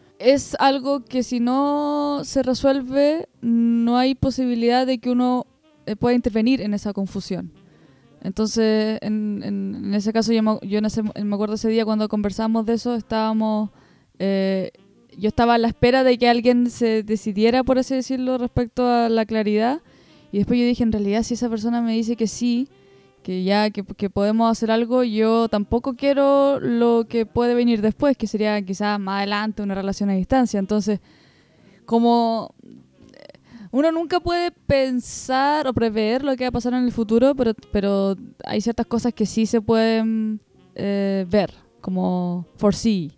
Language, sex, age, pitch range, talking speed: Spanish, female, 20-39, 210-245 Hz, 165 wpm